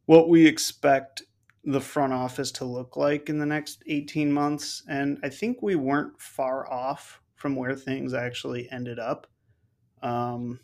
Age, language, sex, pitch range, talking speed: 30-49, English, male, 120-145 Hz, 160 wpm